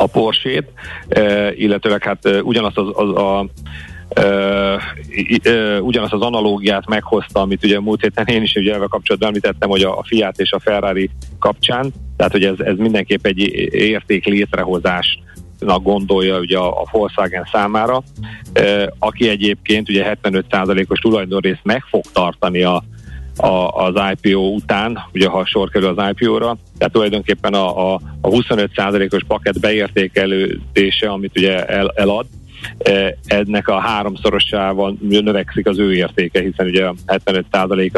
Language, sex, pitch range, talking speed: Hungarian, male, 95-105 Hz, 130 wpm